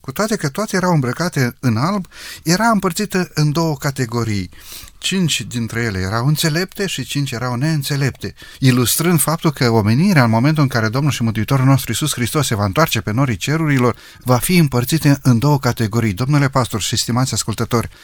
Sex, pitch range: male, 120-160 Hz